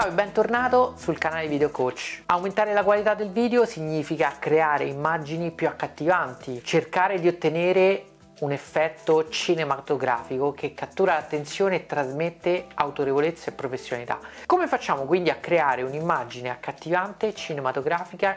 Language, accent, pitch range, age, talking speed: Italian, native, 145-205 Hz, 40-59, 125 wpm